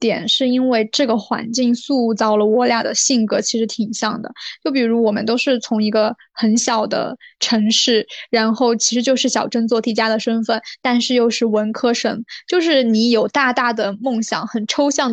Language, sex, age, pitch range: Chinese, female, 10-29, 225-265 Hz